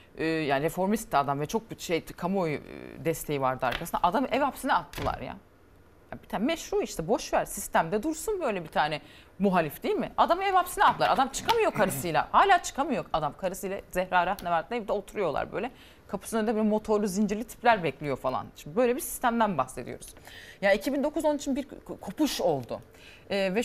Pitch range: 160-240 Hz